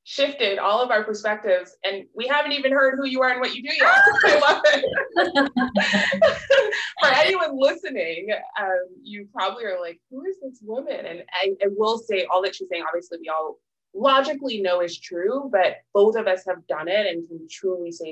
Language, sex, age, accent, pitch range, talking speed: English, female, 20-39, American, 170-255 Hz, 190 wpm